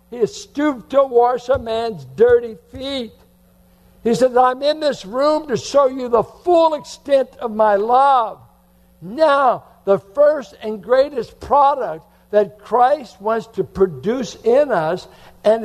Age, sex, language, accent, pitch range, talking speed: 60-79, male, English, American, 180-255 Hz, 145 wpm